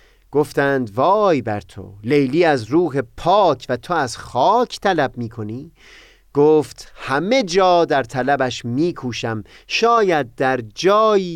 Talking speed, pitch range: 120 wpm, 125-185 Hz